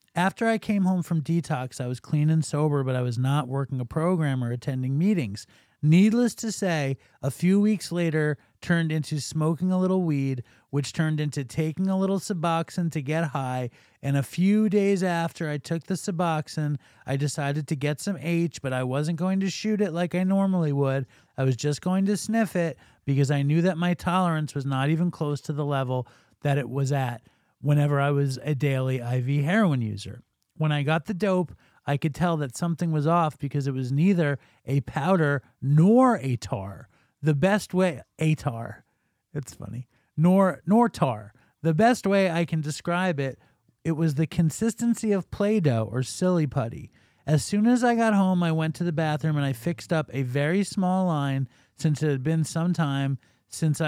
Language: English